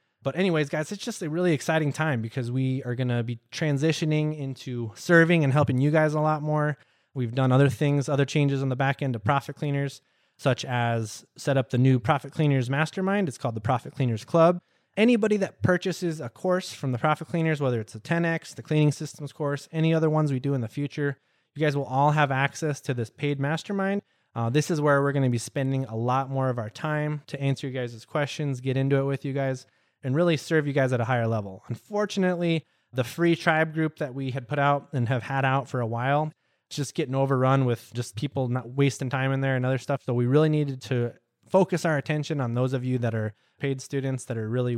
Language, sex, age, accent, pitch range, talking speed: English, male, 20-39, American, 125-155 Hz, 230 wpm